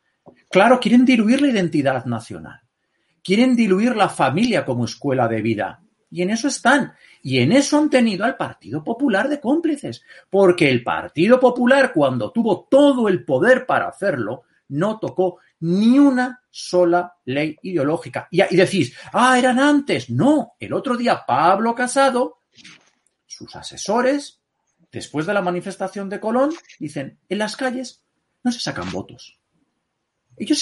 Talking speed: 145 wpm